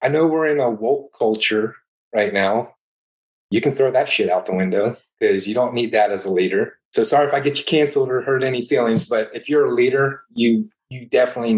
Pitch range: 110-160 Hz